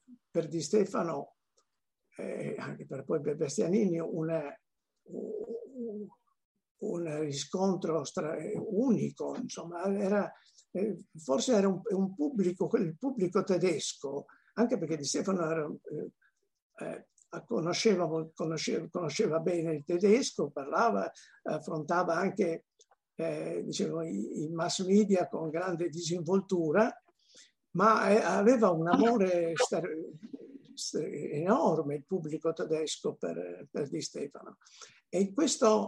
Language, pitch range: Italian, 160-215 Hz